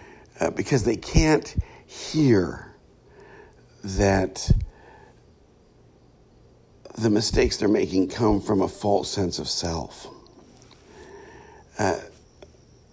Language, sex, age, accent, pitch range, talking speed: English, male, 60-79, American, 90-125 Hz, 85 wpm